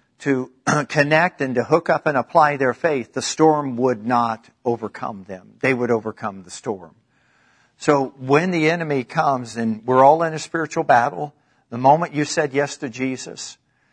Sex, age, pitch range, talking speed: male, 50-69, 125-150 Hz, 170 wpm